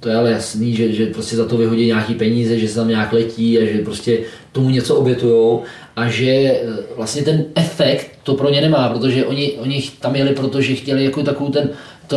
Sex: male